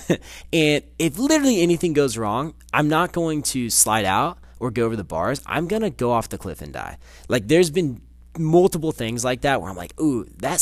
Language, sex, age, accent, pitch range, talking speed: English, male, 20-39, American, 95-145 Hz, 215 wpm